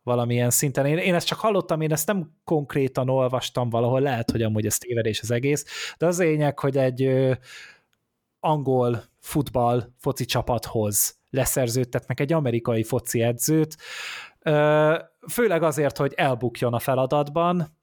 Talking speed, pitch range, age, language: 140 wpm, 115-145 Hz, 20-39, Hungarian